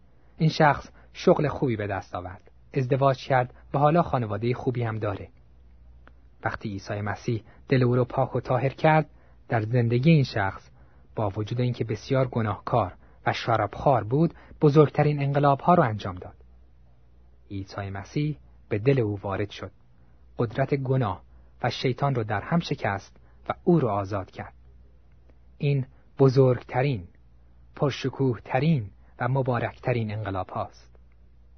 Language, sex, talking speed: Persian, male, 130 wpm